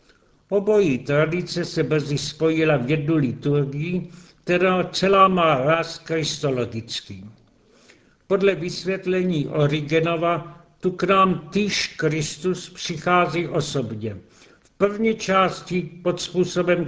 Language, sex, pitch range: Czech, male, 155-180 Hz